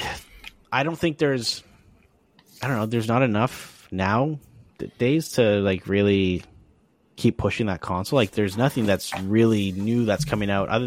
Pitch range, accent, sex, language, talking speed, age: 95-120 Hz, American, male, English, 160 wpm, 30-49